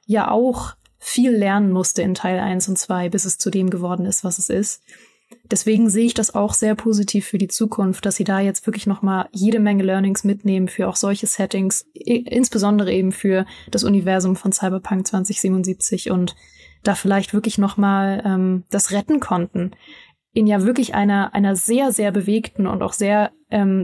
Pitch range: 195-220 Hz